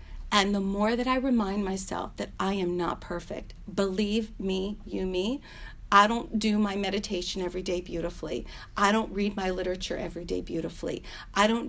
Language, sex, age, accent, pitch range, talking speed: English, female, 40-59, American, 185-220 Hz, 175 wpm